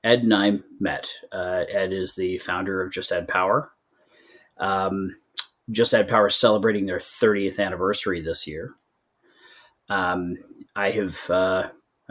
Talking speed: 140 wpm